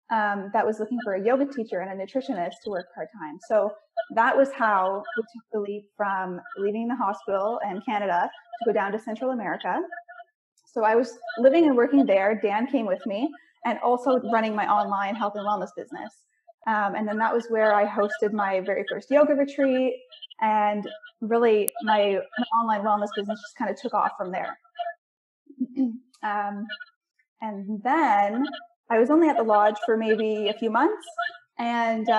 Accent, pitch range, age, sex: American, 210-275 Hz, 10-29, female